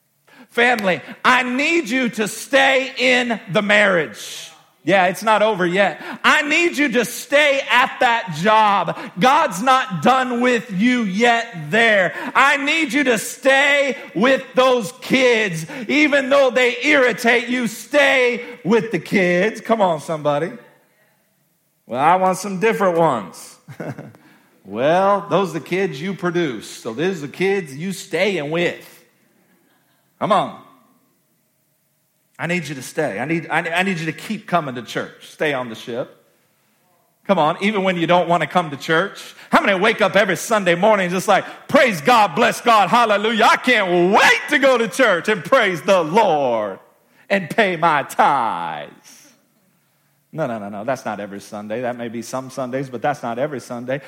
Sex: male